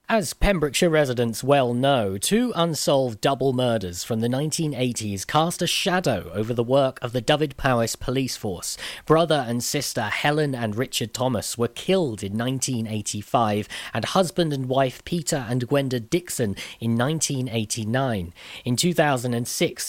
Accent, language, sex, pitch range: British, English, male, 120-160 Hz